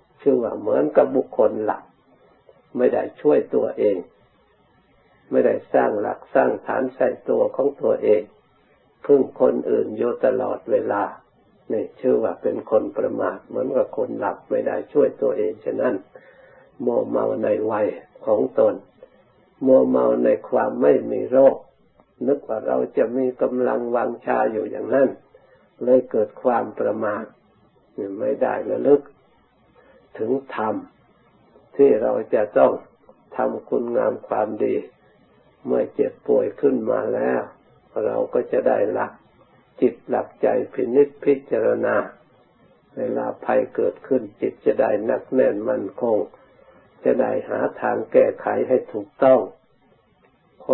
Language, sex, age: Thai, male, 60-79